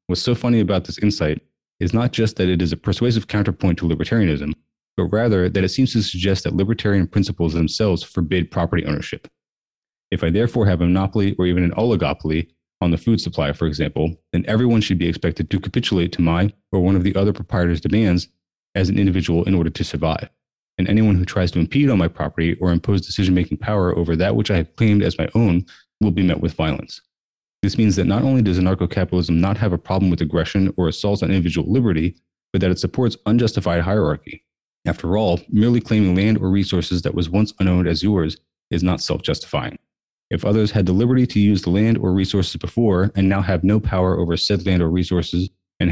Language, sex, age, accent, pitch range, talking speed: English, male, 30-49, American, 85-105 Hz, 210 wpm